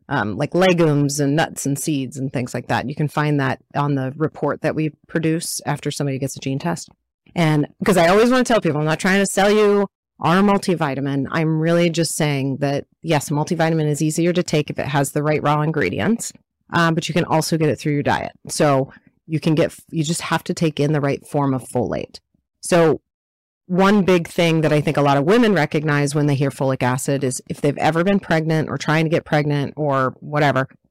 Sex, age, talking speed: female, 30-49, 225 wpm